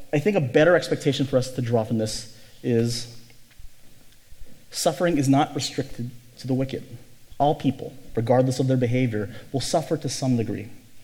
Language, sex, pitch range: English, male, 115-145 Hz